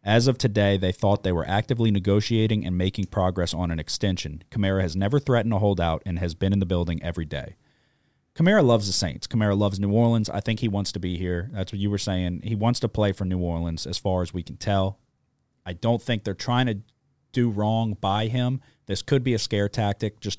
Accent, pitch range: American, 90-115 Hz